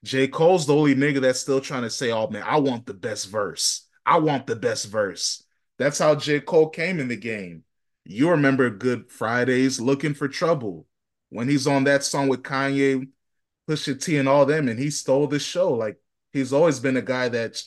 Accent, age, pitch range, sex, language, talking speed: American, 20-39, 120-140 Hz, male, English, 205 wpm